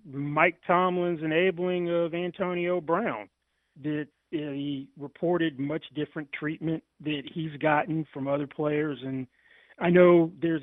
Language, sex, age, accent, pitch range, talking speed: English, male, 30-49, American, 145-175 Hz, 125 wpm